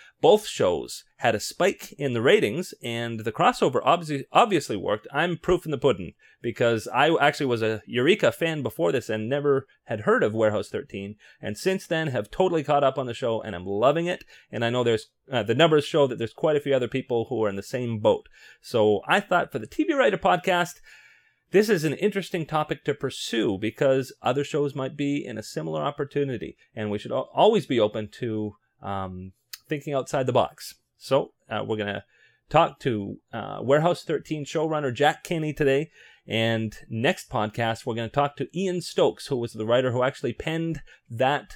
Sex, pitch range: male, 110-155 Hz